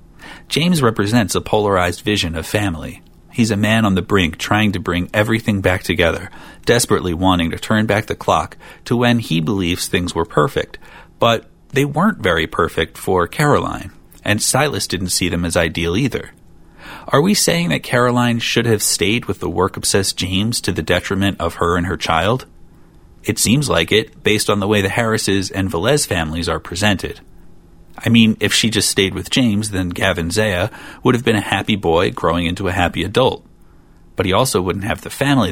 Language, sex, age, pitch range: English, male, 30-49, 85-110 Hz